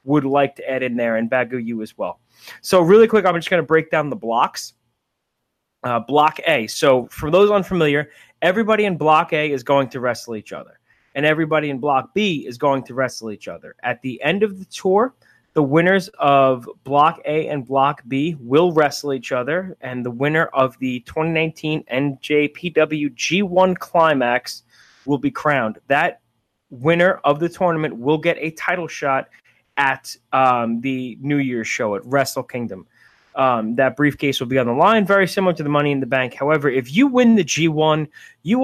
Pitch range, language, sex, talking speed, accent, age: 130-170 Hz, English, male, 190 wpm, American, 20-39